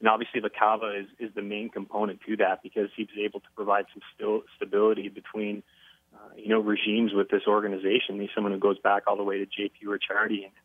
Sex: male